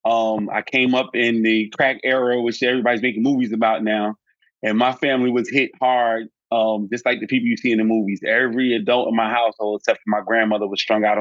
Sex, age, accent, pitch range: male, 30-49, American, 115-135 Hz